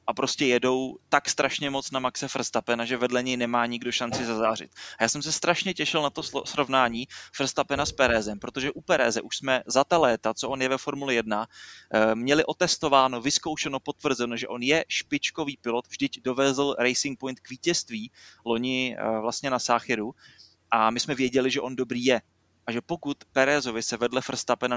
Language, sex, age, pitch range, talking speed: Czech, male, 20-39, 120-140 Hz, 185 wpm